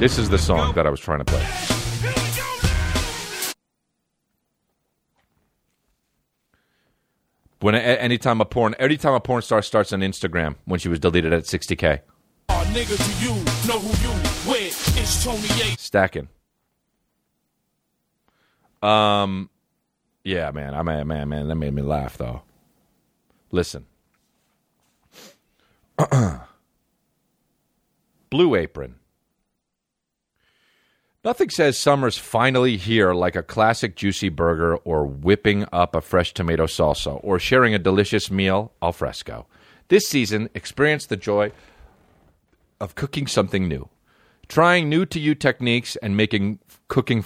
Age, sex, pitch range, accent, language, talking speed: 40-59, male, 85-120 Hz, American, English, 105 wpm